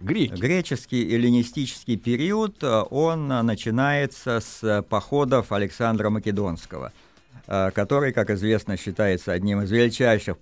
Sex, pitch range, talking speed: male, 95-130 Hz, 90 wpm